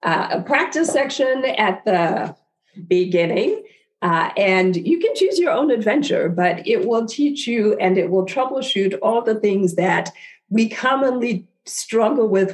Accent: American